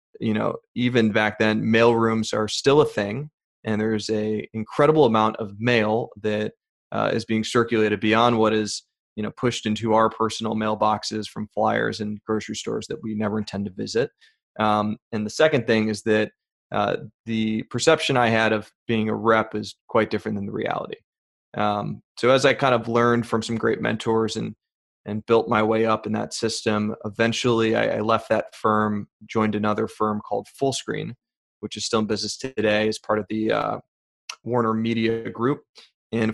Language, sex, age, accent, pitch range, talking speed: English, male, 20-39, American, 110-120 Hz, 185 wpm